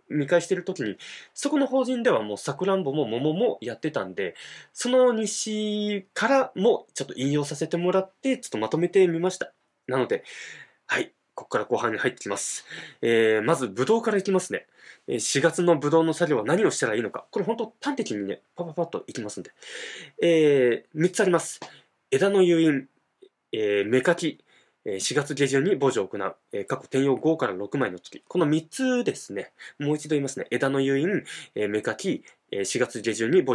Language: Japanese